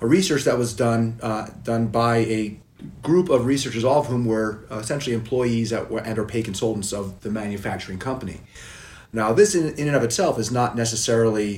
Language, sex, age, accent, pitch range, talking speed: English, male, 30-49, American, 100-120 Hz, 195 wpm